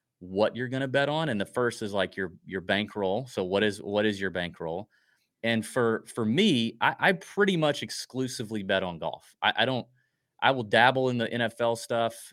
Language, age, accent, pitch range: English, 30-49, American, 100-130 Hz